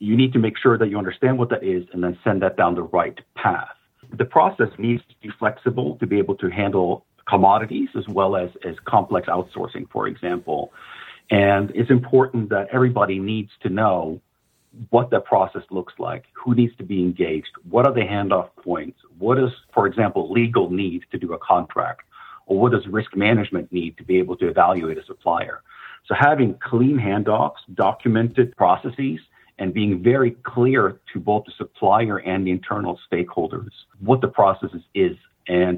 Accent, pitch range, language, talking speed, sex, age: American, 95-120 Hz, English, 180 wpm, male, 50-69